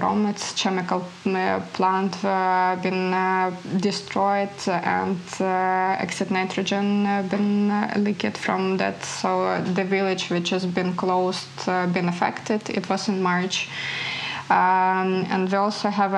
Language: English